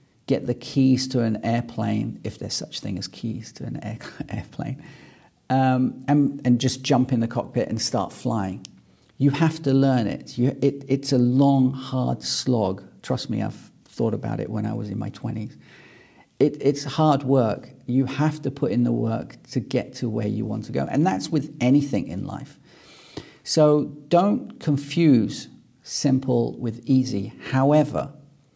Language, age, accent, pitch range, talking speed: English, 40-59, British, 115-140 Hz, 170 wpm